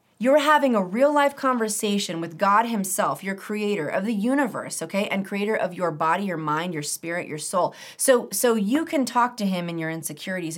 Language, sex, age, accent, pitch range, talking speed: English, female, 30-49, American, 175-235 Hz, 205 wpm